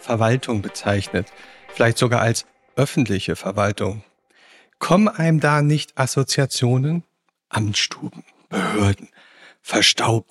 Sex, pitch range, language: male, 115-140 Hz, German